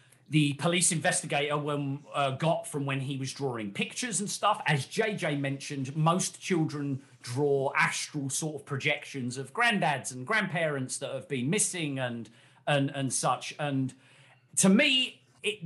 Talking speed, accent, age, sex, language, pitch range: 155 wpm, British, 40-59, male, English, 135-165 Hz